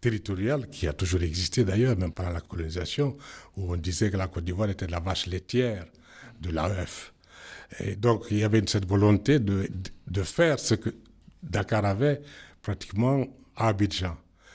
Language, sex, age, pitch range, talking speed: French, male, 60-79, 100-130 Hz, 165 wpm